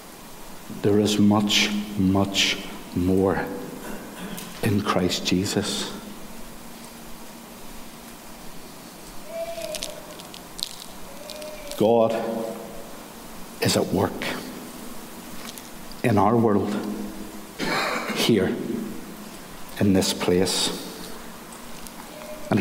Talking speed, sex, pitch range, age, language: 55 wpm, male, 105-130 Hz, 60-79, English